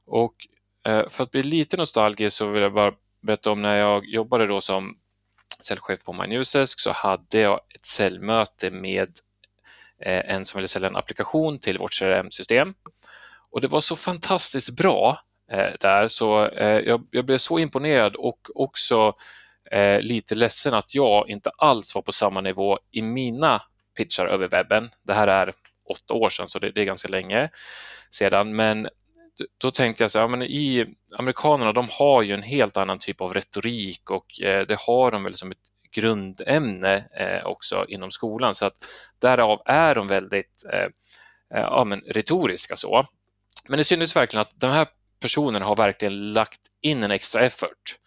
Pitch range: 100-130 Hz